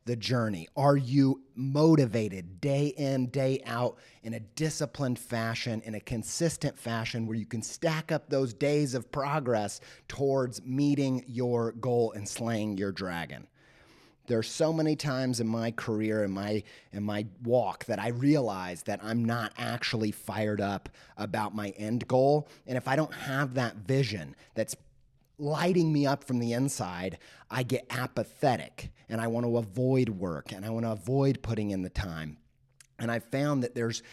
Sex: male